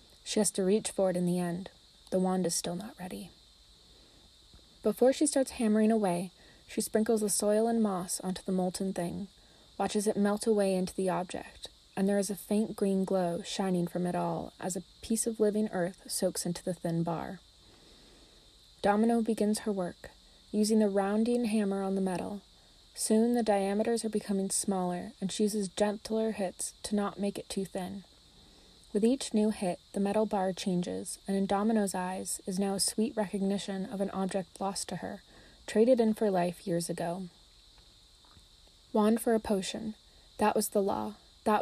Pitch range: 185-215 Hz